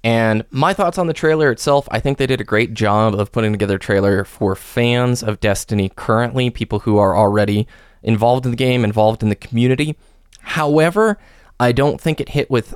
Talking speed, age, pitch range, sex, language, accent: 200 wpm, 20-39, 100-120 Hz, male, English, American